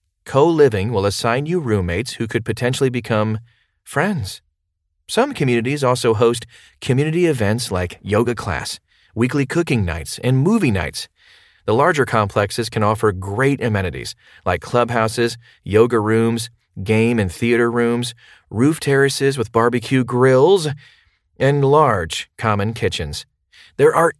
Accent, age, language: American, 30-49, English